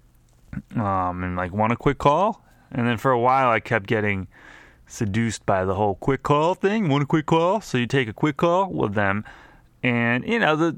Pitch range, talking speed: 95-120 Hz, 210 wpm